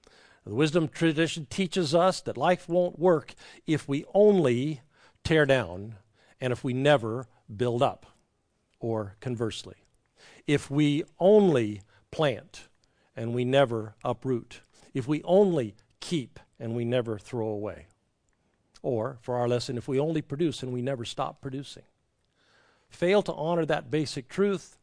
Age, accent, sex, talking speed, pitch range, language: 50-69, American, male, 140 wpm, 120-155 Hz, English